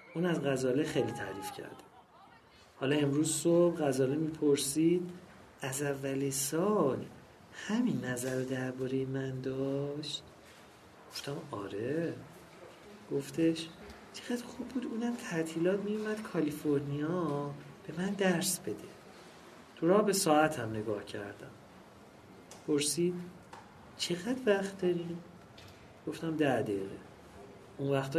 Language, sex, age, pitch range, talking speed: English, male, 40-59, 130-175 Hz, 105 wpm